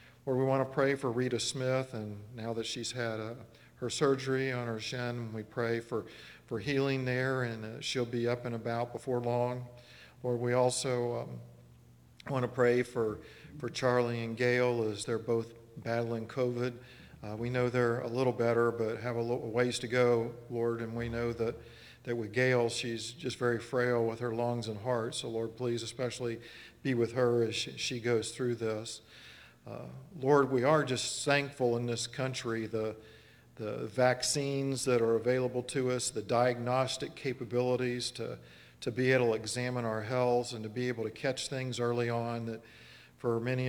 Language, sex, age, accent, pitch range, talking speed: English, male, 50-69, American, 115-125 Hz, 185 wpm